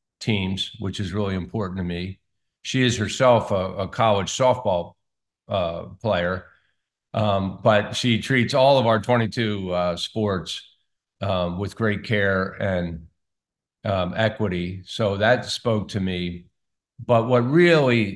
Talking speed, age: 135 wpm, 50-69